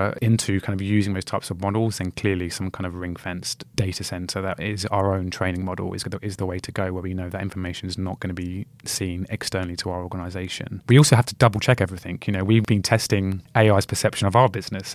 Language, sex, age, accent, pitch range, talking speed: English, male, 20-39, British, 95-110 Hz, 240 wpm